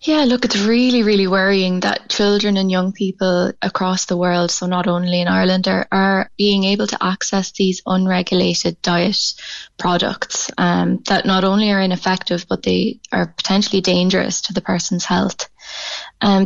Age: 20-39